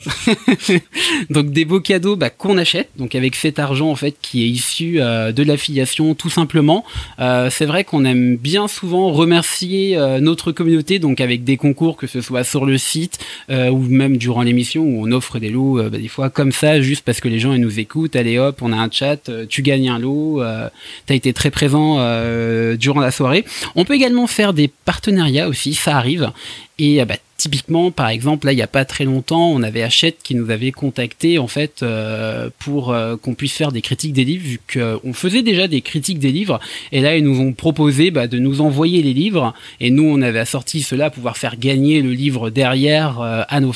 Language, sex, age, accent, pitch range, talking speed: French, male, 20-39, French, 125-155 Hz, 220 wpm